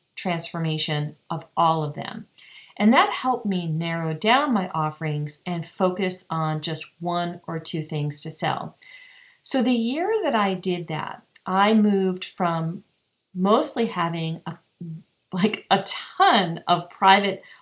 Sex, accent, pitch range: female, American, 160-215 Hz